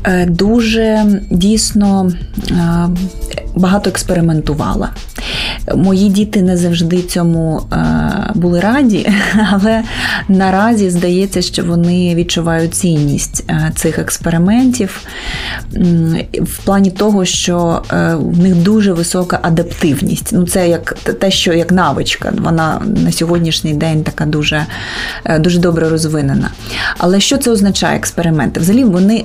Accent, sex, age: native, female, 30-49